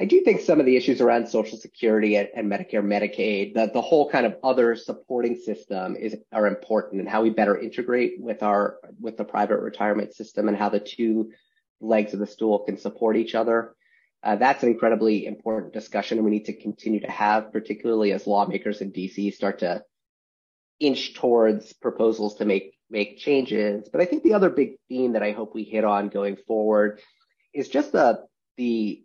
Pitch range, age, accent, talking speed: 105-125 Hz, 30-49, American, 195 wpm